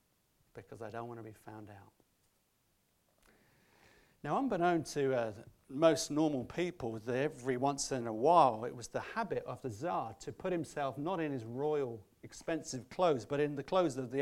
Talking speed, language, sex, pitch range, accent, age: 175 wpm, English, male, 120-155 Hz, British, 40-59